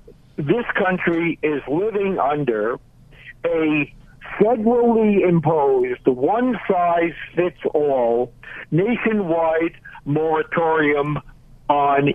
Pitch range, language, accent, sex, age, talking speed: 145-195 Hz, English, American, male, 60-79, 60 wpm